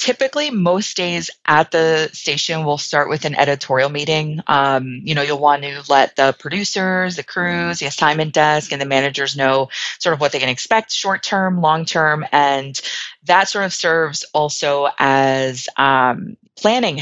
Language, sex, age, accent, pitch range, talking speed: English, female, 30-49, American, 135-160 Hz, 175 wpm